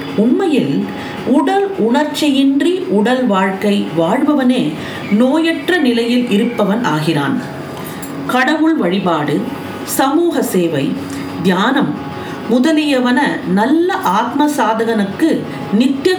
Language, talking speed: Tamil, 75 wpm